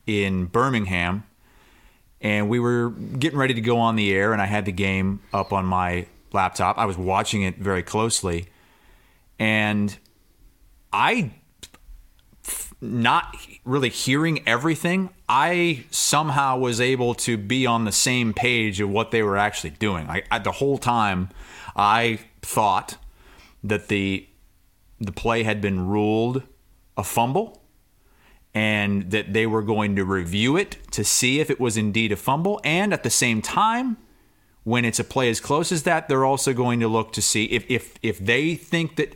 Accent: American